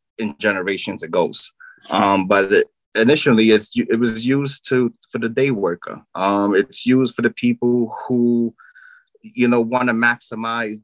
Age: 20-39